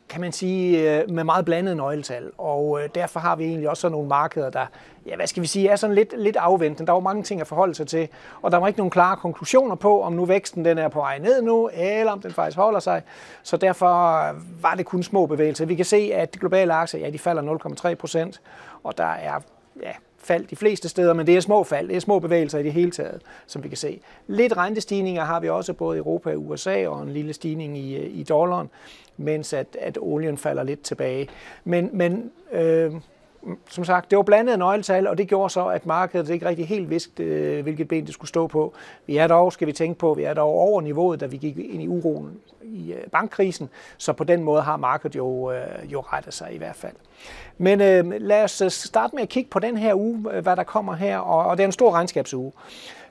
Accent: native